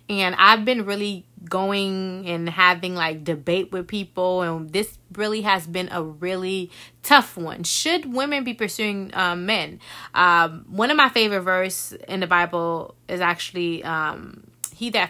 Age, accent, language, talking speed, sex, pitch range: 20-39, American, English, 160 wpm, female, 165-225 Hz